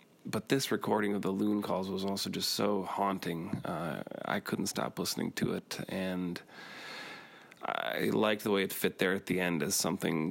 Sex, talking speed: male, 185 wpm